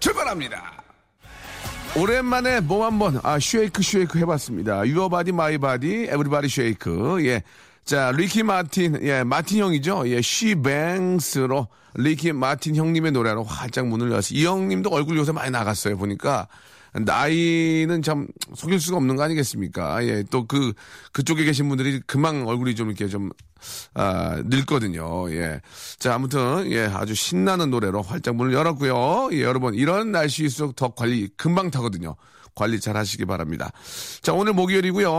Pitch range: 115-165 Hz